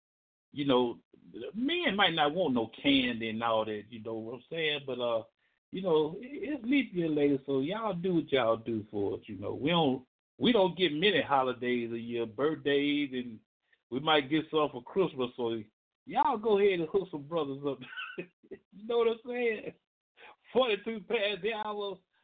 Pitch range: 115-160 Hz